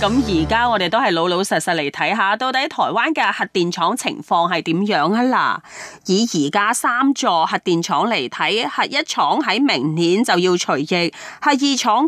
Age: 30-49